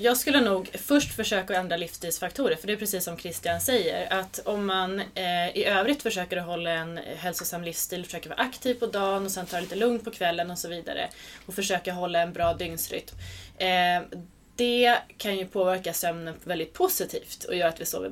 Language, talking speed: Swedish, 195 wpm